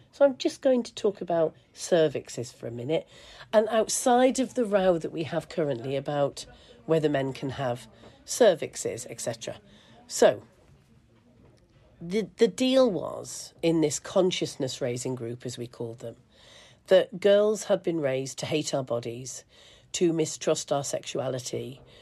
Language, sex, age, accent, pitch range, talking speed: English, female, 40-59, British, 130-170 Hz, 145 wpm